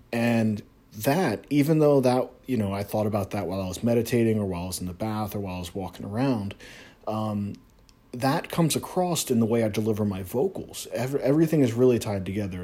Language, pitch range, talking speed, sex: English, 100-130 Hz, 215 wpm, male